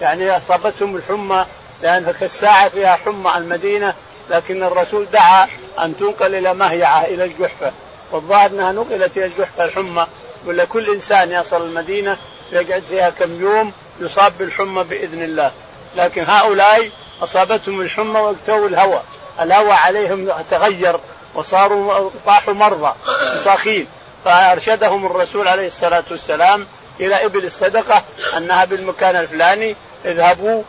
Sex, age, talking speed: male, 50-69, 125 wpm